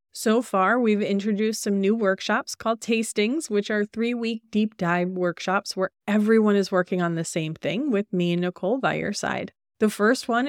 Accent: American